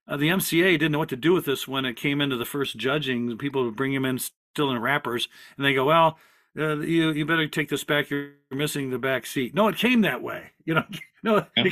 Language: English